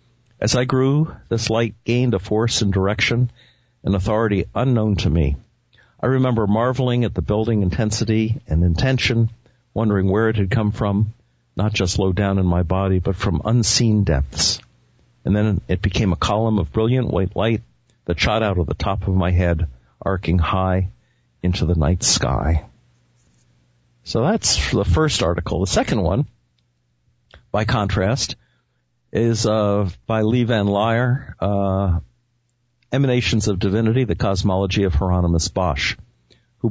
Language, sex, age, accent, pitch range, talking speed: English, male, 50-69, American, 90-115 Hz, 150 wpm